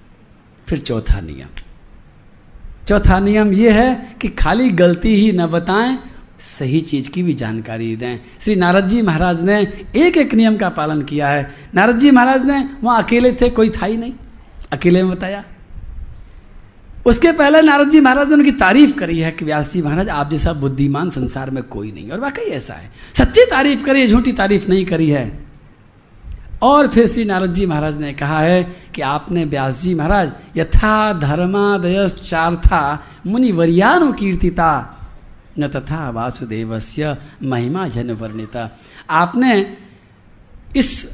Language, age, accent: Hindi, 50-69, native